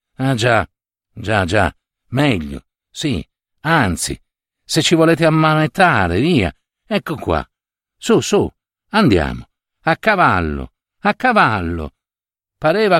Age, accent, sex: 60-79, native, male